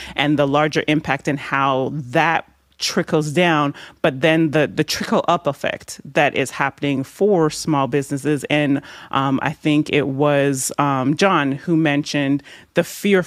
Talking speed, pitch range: 155 wpm, 140-165 Hz